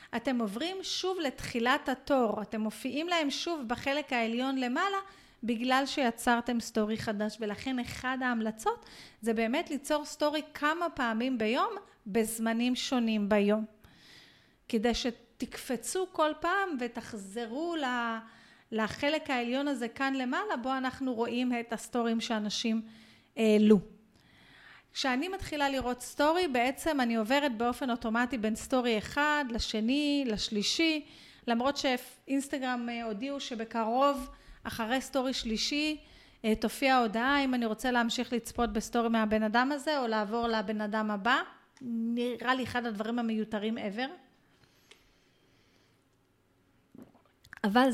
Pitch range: 225-280 Hz